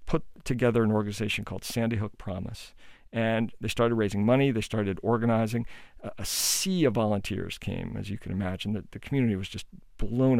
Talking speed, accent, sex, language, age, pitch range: 185 wpm, American, male, English, 50-69, 105-125 Hz